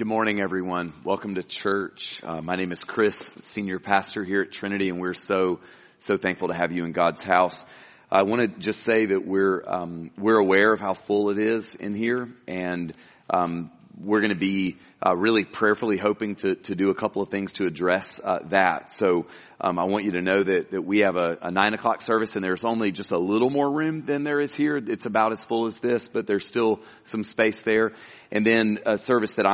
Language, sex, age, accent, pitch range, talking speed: English, male, 40-59, American, 95-110 Hz, 225 wpm